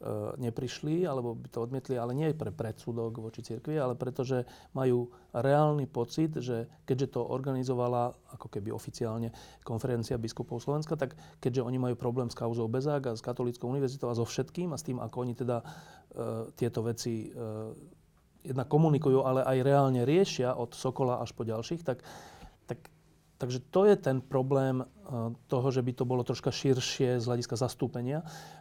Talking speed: 170 wpm